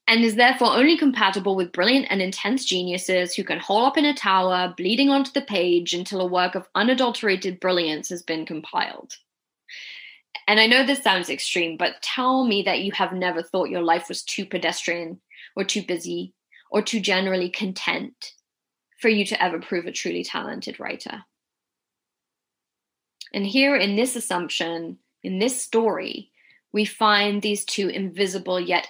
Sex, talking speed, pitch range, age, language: female, 165 wpm, 180-220 Hz, 20-39, English